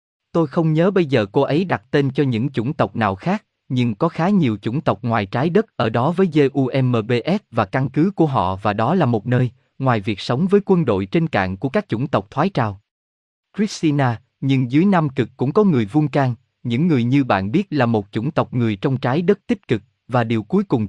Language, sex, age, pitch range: Vietnamese, male, 20-39, 115-160 Hz